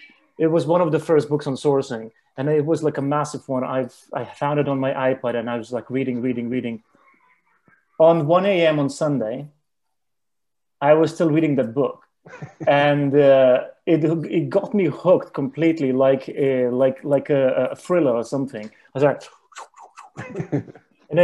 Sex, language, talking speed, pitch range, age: male, English, 175 wpm, 135-160 Hz, 30-49